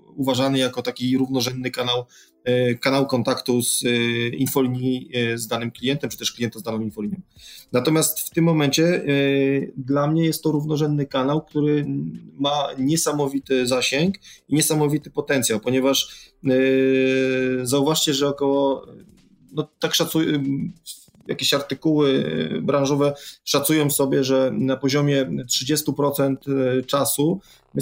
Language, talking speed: Polish, 115 wpm